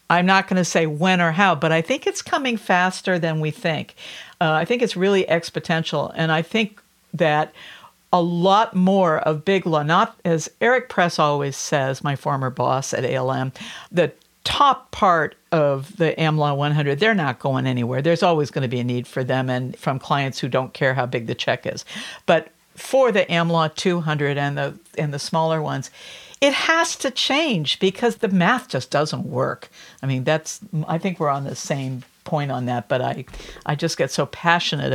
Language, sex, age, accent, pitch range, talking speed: English, female, 60-79, American, 150-195 Hz, 195 wpm